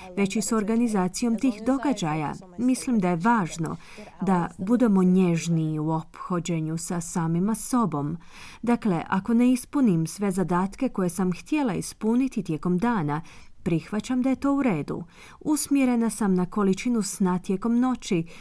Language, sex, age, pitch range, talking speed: Croatian, female, 30-49, 175-245 Hz, 140 wpm